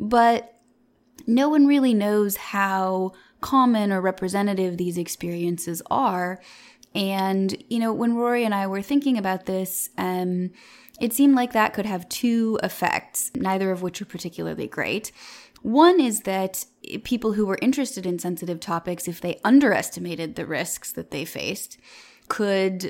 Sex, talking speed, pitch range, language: female, 150 wpm, 180-225 Hz, English